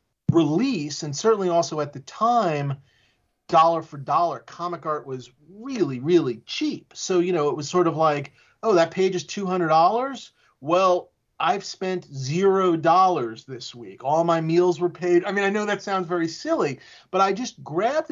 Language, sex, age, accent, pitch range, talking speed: Danish, male, 40-59, American, 135-180 Hz, 180 wpm